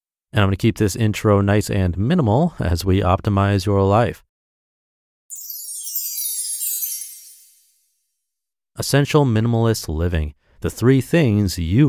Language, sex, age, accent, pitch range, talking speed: English, male, 30-49, American, 85-115 Hz, 105 wpm